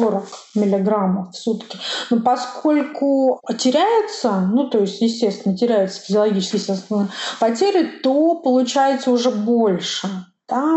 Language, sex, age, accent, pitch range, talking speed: Russian, female, 30-49, native, 210-275 Hz, 110 wpm